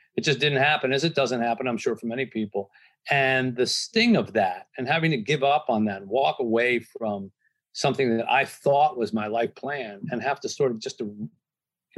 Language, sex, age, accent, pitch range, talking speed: English, male, 50-69, American, 115-165 Hz, 215 wpm